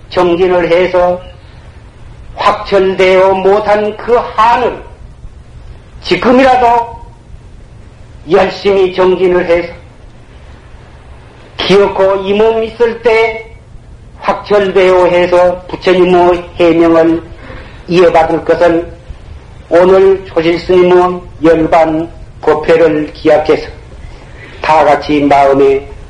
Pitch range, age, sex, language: 145-185 Hz, 40-59, male, Korean